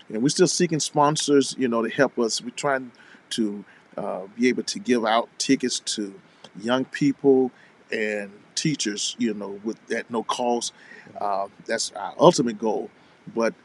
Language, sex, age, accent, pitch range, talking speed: English, male, 40-59, American, 115-140 Hz, 165 wpm